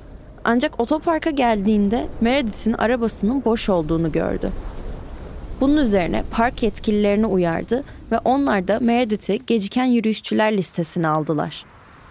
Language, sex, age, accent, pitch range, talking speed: Turkish, female, 20-39, native, 185-235 Hz, 105 wpm